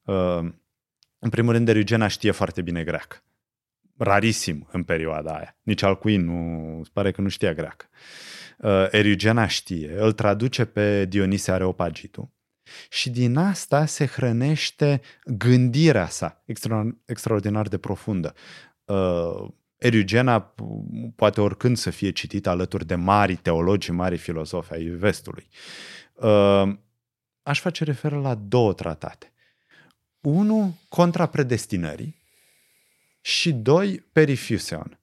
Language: Romanian